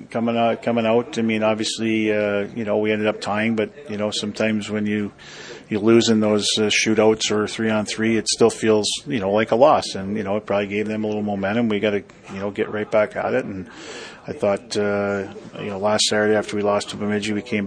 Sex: male